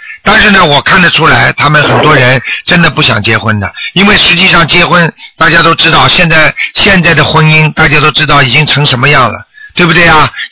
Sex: male